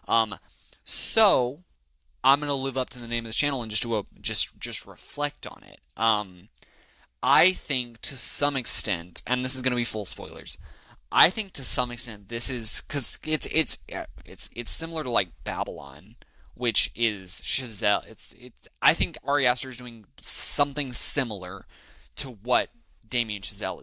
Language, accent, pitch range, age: English, American, 105-135 Hz, 20-39